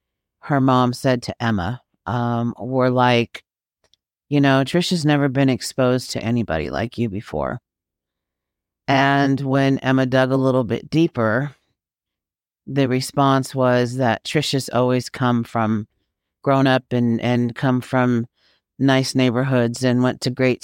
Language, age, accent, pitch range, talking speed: English, 40-59, American, 115-130 Hz, 135 wpm